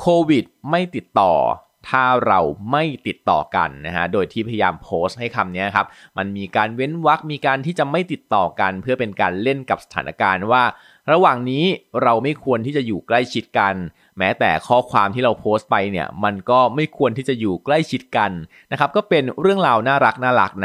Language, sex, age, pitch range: Thai, male, 20-39, 105-135 Hz